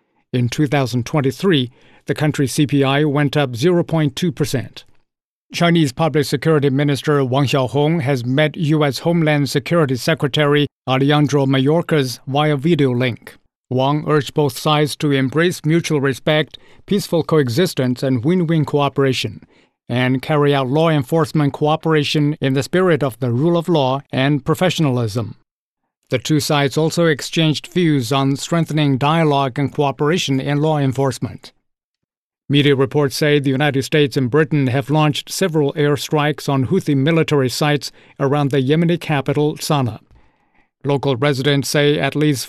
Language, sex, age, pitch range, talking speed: English, male, 50-69, 135-155 Hz, 135 wpm